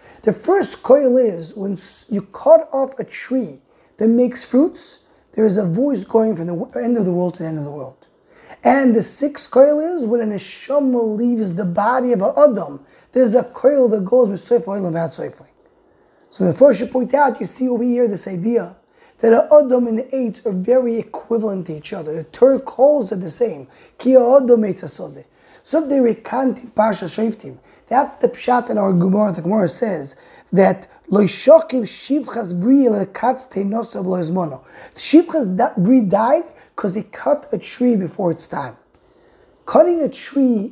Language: English